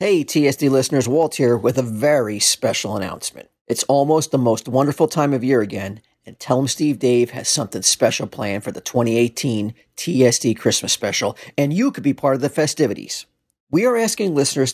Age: 40-59